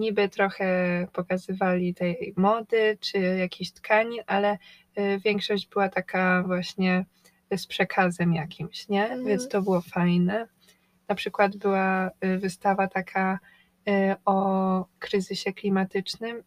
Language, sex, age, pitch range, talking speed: Polish, female, 20-39, 190-205 Hz, 105 wpm